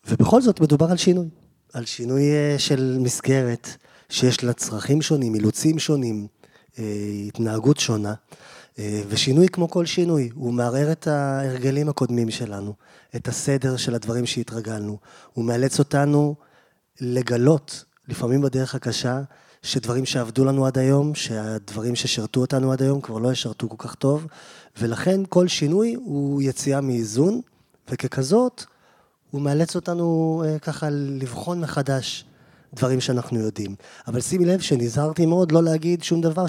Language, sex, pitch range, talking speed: Hebrew, male, 115-150 Hz, 130 wpm